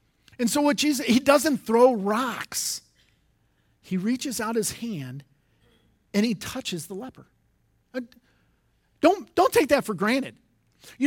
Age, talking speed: 40-59, 135 wpm